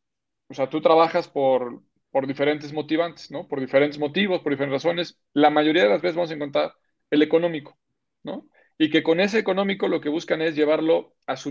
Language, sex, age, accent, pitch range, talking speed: Spanish, male, 40-59, Mexican, 150-185 Hz, 200 wpm